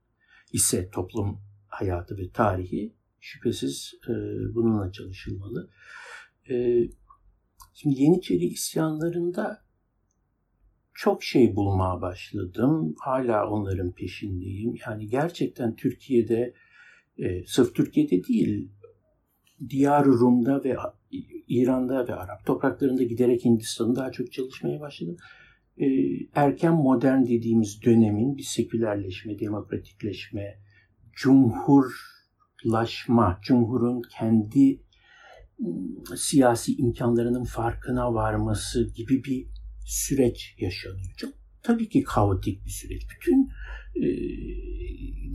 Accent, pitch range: native, 100-130 Hz